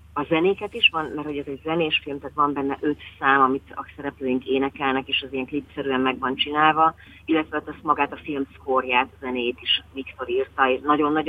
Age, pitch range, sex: 30-49, 135-155 Hz, female